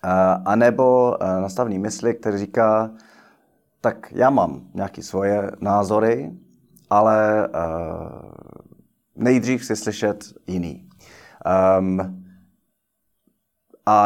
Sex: male